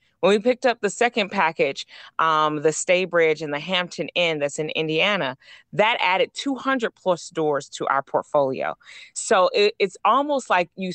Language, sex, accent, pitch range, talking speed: English, female, American, 160-200 Hz, 175 wpm